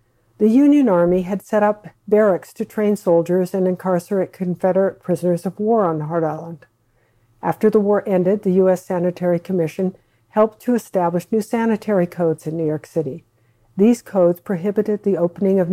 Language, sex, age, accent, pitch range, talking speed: English, female, 60-79, American, 170-210 Hz, 165 wpm